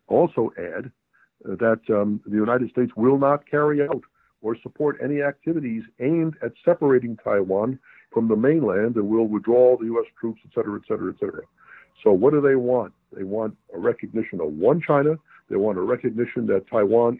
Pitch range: 105-135 Hz